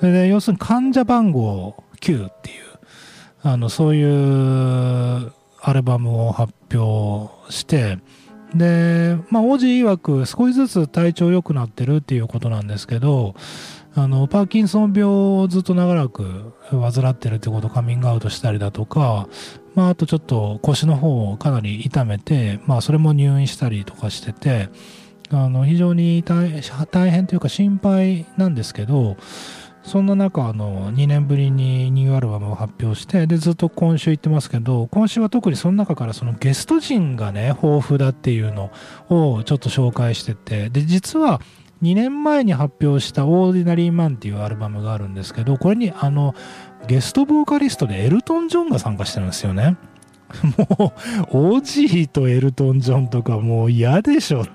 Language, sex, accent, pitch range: Japanese, male, native, 120-185 Hz